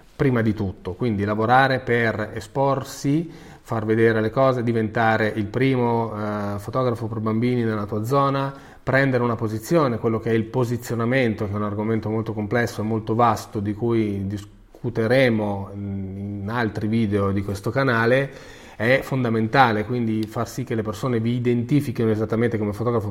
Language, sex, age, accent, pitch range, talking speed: Italian, male, 30-49, native, 105-125 Hz, 155 wpm